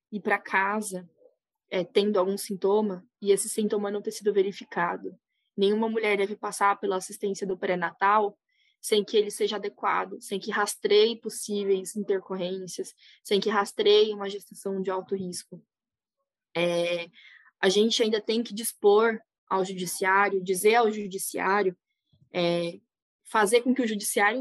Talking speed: 145 wpm